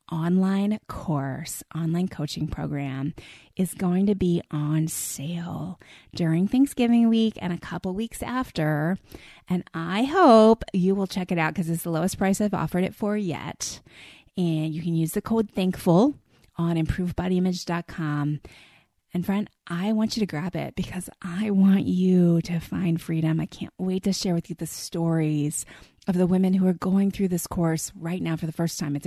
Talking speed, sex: 180 wpm, female